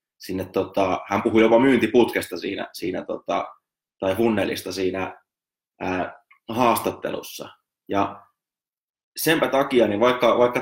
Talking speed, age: 115 wpm, 20-39